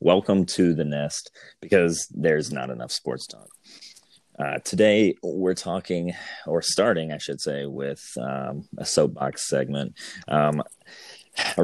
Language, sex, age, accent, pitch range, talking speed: English, male, 30-49, American, 70-85 Hz, 135 wpm